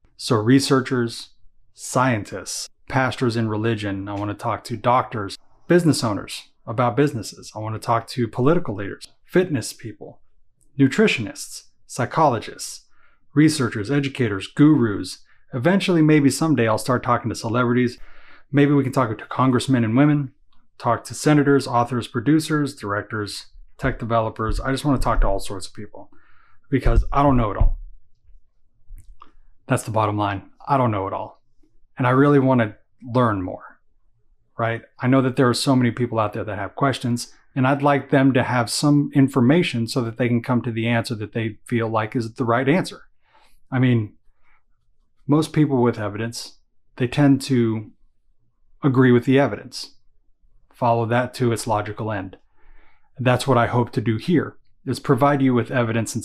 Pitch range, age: 110-135 Hz, 30-49